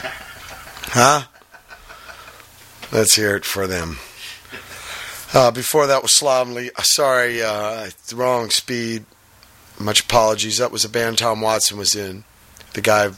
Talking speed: 130 wpm